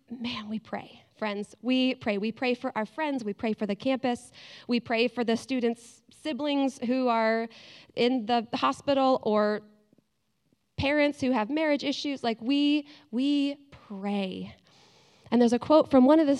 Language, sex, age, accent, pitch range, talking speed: English, female, 20-39, American, 210-270 Hz, 165 wpm